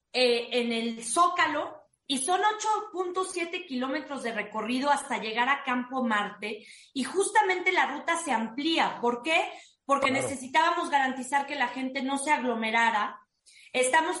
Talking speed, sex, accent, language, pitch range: 140 wpm, female, Mexican, Spanish, 235-290 Hz